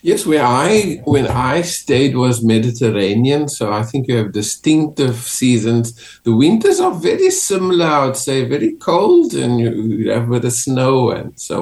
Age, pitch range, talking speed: 50-69, 115-145 Hz, 175 wpm